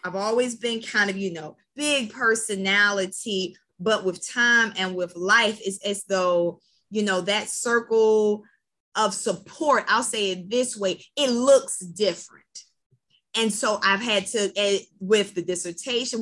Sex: female